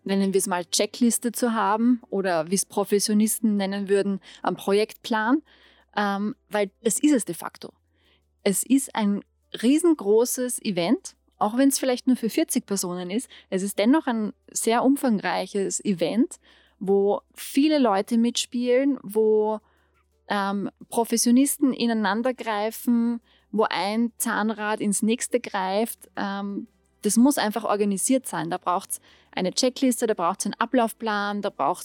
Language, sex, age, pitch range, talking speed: German, female, 20-39, 195-235 Hz, 145 wpm